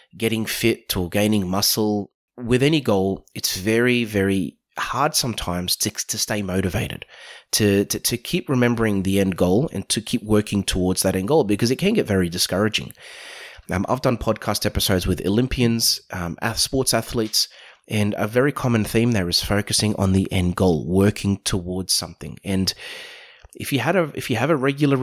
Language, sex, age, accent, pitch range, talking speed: English, male, 30-49, Australian, 95-115 Hz, 175 wpm